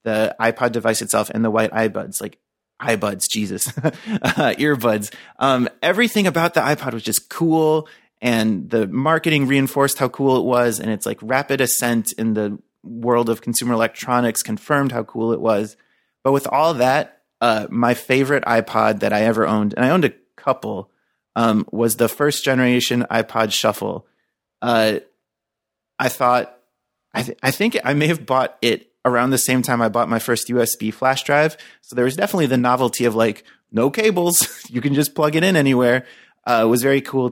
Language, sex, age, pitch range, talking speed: English, male, 30-49, 115-135 Hz, 180 wpm